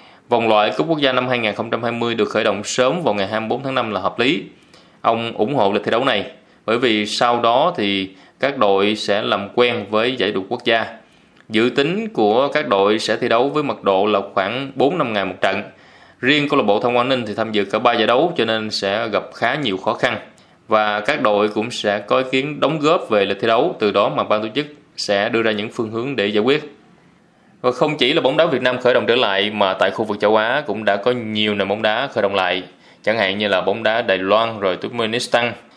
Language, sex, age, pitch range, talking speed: Vietnamese, male, 20-39, 100-125 Hz, 245 wpm